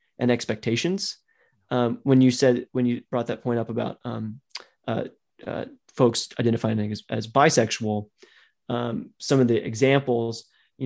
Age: 30-49